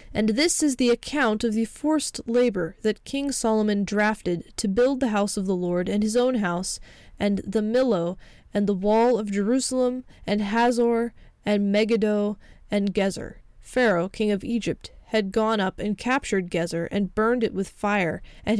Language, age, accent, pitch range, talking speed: English, 20-39, American, 200-235 Hz, 175 wpm